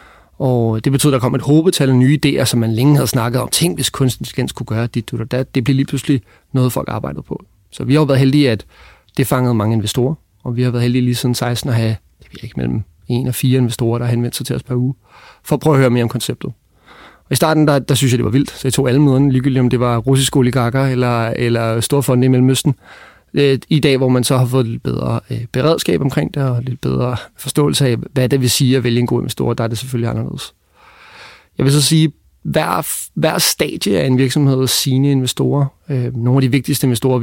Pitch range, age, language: 120-135 Hz, 30-49, Danish